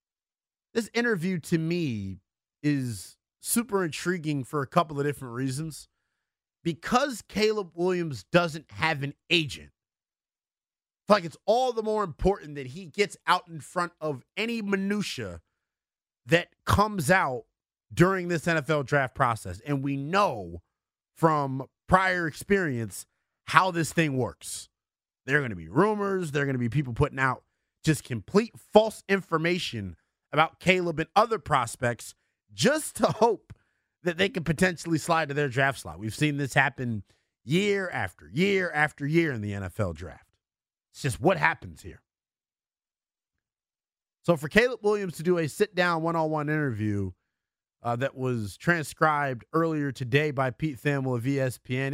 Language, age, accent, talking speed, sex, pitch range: English, 30-49, American, 150 wpm, male, 130-180 Hz